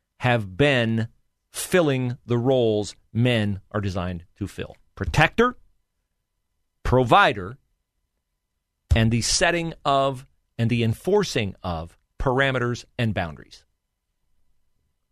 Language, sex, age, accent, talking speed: English, male, 40-59, American, 90 wpm